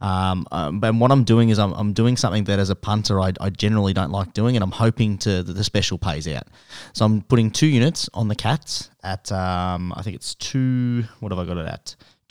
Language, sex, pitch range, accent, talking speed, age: English, male, 95-120 Hz, Australian, 245 wpm, 20-39